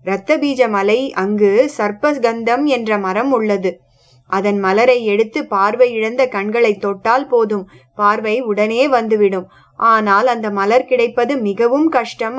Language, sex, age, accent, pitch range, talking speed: English, female, 20-39, Indian, 205-260 Hz, 110 wpm